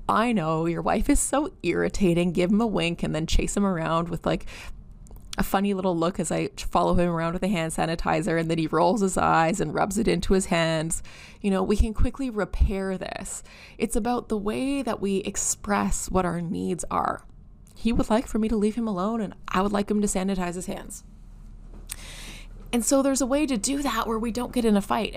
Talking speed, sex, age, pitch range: 225 wpm, female, 20-39, 185-235 Hz